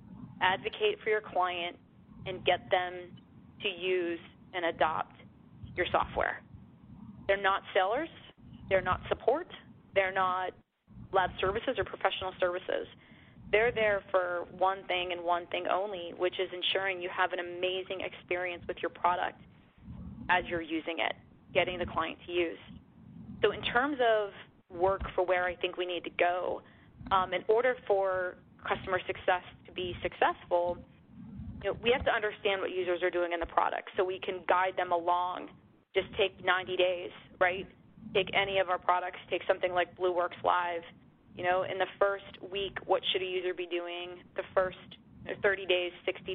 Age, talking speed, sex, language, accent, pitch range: 20-39, 160 wpm, female, English, American, 180-195 Hz